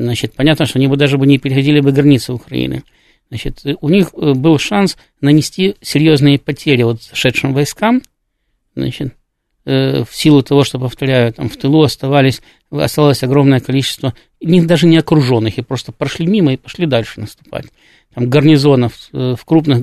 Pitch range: 130-150 Hz